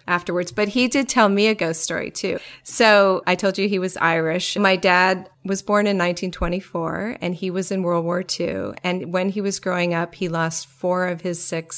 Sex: female